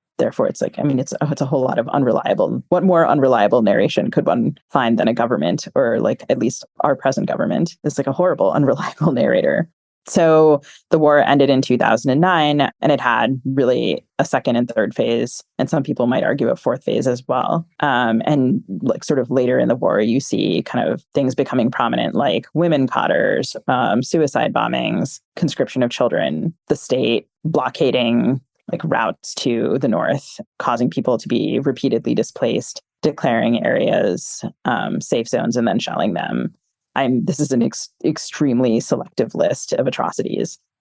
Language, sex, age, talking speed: English, female, 20-39, 175 wpm